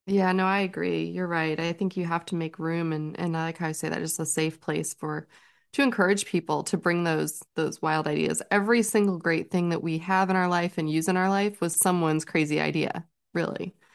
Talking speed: 235 wpm